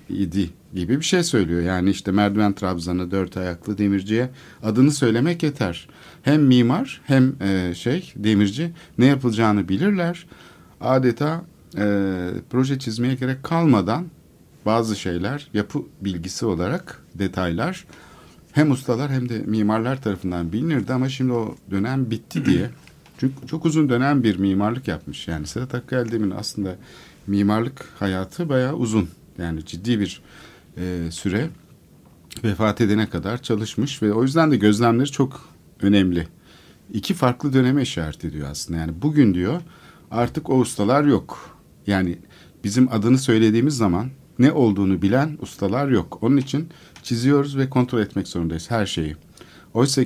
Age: 50-69